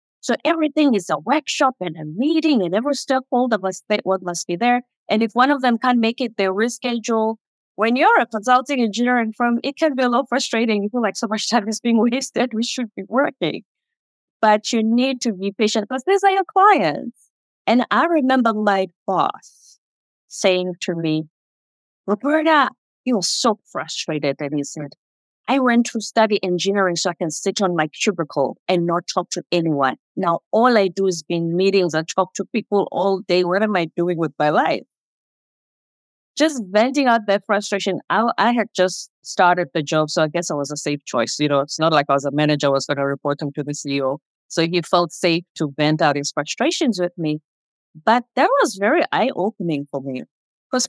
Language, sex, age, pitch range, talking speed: English, female, 30-49, 170-245 Hz, 200 wpm